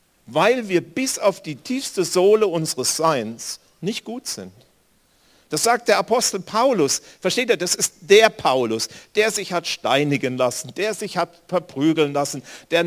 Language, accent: German, German